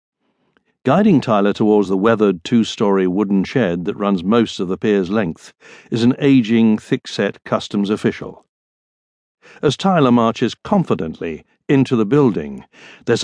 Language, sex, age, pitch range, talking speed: English, male, 60-79, 110-150 Hz, 130 wpm